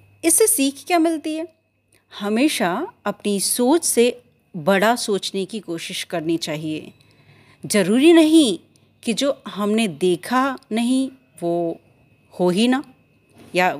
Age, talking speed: 30-49, 115 wpm